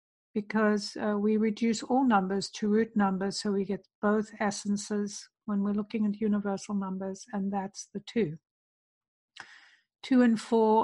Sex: female